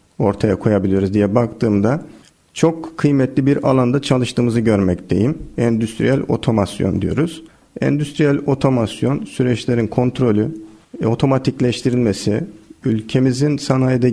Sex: male